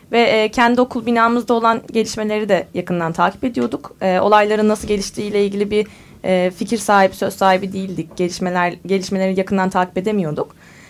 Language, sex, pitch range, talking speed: Turkish, female, 195-250 Hz, 140 wpm